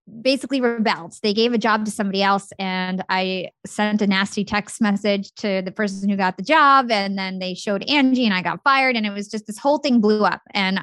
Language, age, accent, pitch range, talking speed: English, 20-39, American, 185-210 Hz, 235 wpm